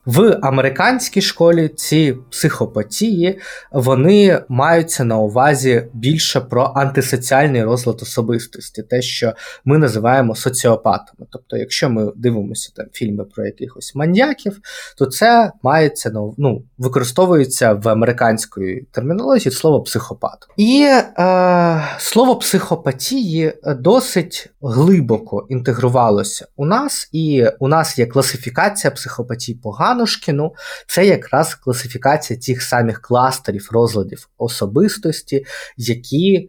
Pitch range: 120-165 Hz